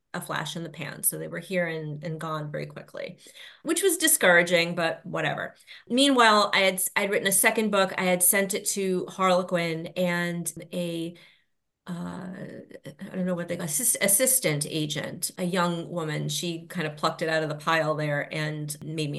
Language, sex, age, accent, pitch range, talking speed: English, female, 30-49, American, 170-225 Hz, 190 wpm